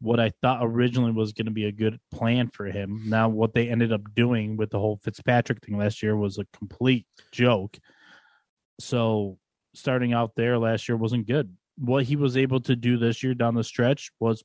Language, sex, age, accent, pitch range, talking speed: English, male, 20-39, American, 105-120 Hz, 210 wpm